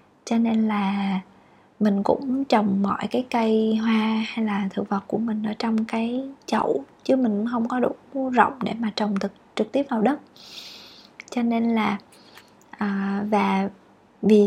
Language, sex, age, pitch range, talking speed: Vietnamese, female, 20-39, 205-235 Hz, 160 wpm